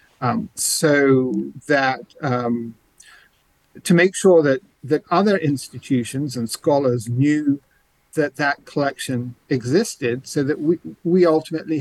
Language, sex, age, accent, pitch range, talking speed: English, male, 50-69, British, 125-150 Hz, 115 wpm